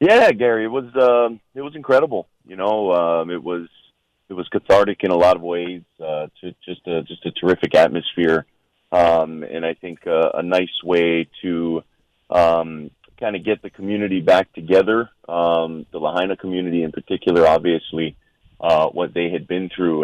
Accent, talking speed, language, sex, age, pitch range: American, 175 wpm, English, male, 30-49, 80-95 Hz